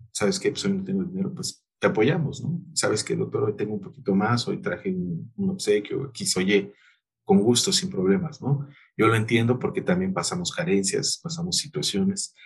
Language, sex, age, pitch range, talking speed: Spanish, male, 40-59, 110-185 Hz, 195 wpm